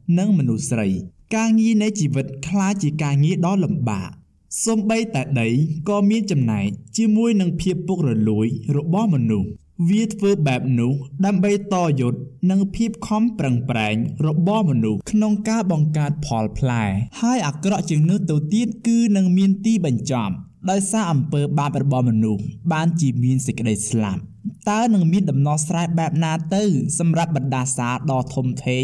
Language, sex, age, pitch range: English, male, 20-39, 125-195 Hz